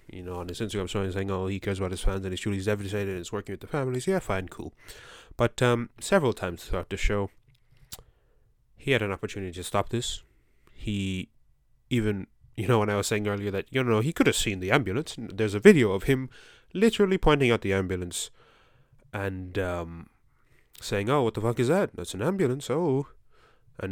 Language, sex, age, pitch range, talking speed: English, male, 20-39, 95-120 Hz, 205 wpm